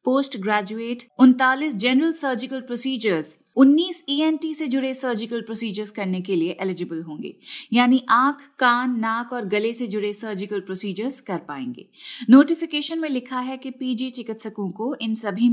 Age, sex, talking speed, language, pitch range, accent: 30-49, female, 150 wpm, Hindi, 210-270 Hz, native